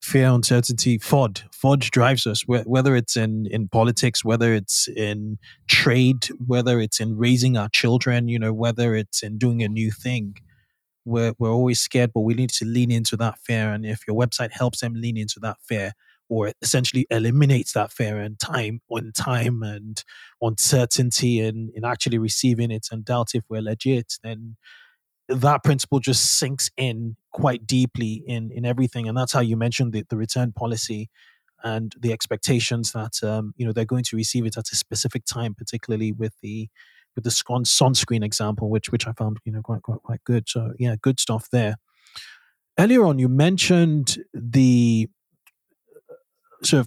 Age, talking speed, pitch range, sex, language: 20-39, 180 wpm, 110-125 Hz, male, English